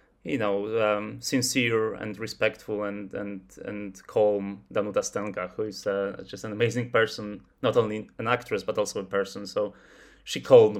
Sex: male